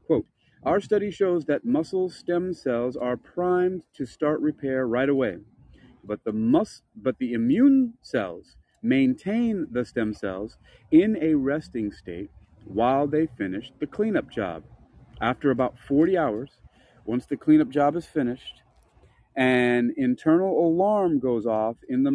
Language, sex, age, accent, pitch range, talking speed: English, male, 40-59, American, 115-165 Hz, 135 wpm